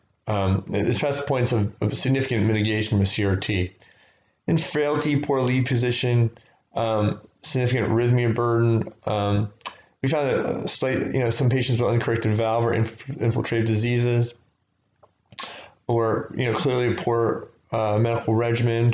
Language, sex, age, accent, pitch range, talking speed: English, male, 30-49, American, 110-140 Hz, 145 wpm